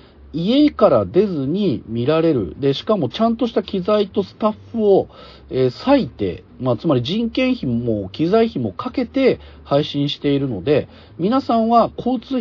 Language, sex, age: Japanese, male, 40-59